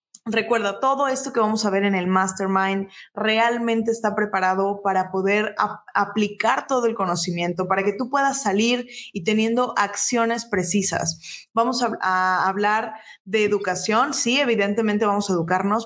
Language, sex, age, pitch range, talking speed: Spanish, female, 20-39, 200-245 Hz, 150 wpm